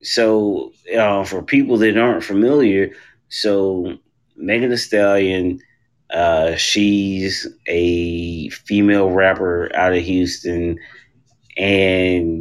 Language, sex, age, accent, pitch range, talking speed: English, male, 30-49, American, 90-115 Hz, 95 wpm